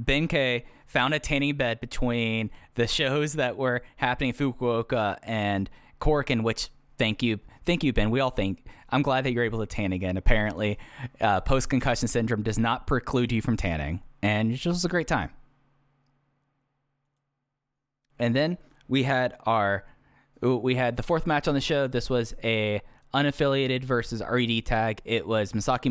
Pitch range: 110-135 Hz